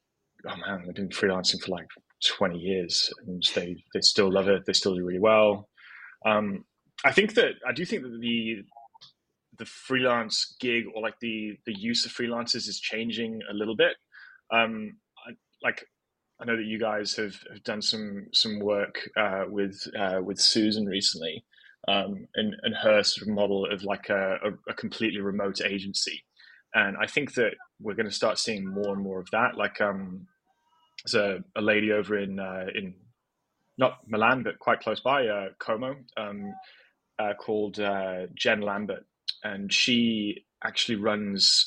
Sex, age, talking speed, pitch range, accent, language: male, 20-39, 175 wpm, 100-115 Hz, British, English